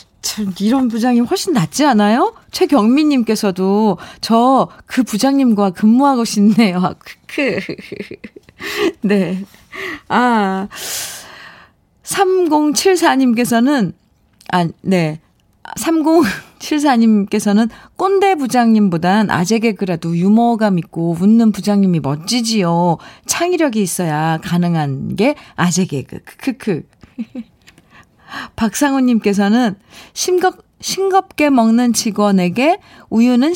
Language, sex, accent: Korean, female, native